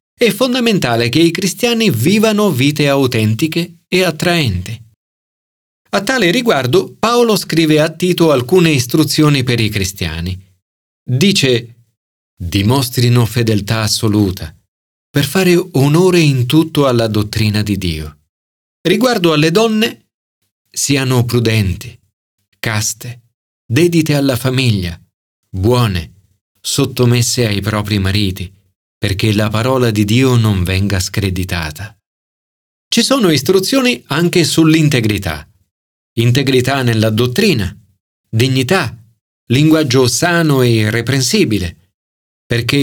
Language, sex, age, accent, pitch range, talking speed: Italian, male, 40-59, native, 100-160 Hz, 100 wpm